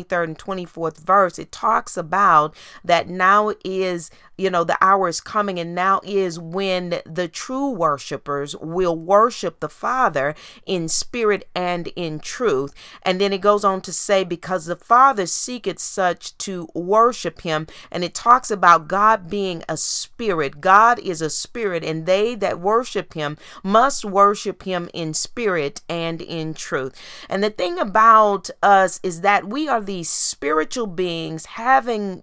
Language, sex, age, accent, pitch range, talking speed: English, female, 40-59, American, 170-215 Hz, 160 wpm